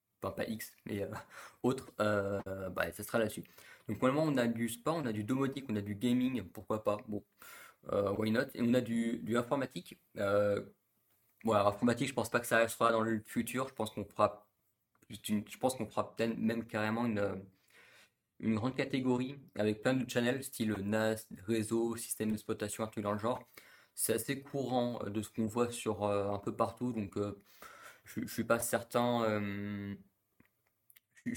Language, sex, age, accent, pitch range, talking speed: French, male, 20-39, French, 105-120 Hz, 185 wpm